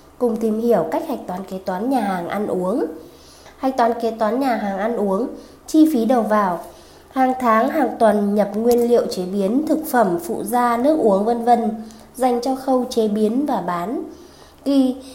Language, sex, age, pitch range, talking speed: Vietnamese, female, 20-39, 215-265 Hz, 195 wpm